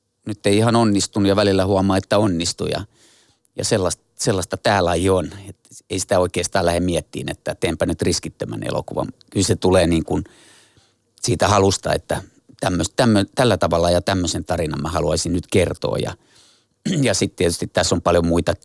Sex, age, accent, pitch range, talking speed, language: male, 30-49, native, 85-105 Hz, 170 wpm, Finnish